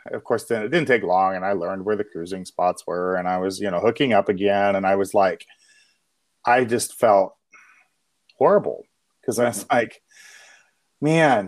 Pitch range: 105-130 Hz